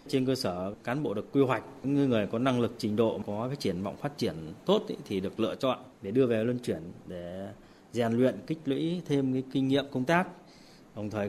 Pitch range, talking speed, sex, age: 105-135 Hz, 235 wpm, male, 20-39